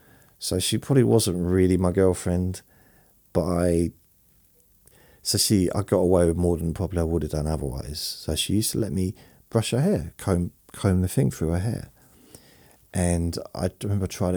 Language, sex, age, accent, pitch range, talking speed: English, male, 40-59, British, 80-100 Hz, 180 wpm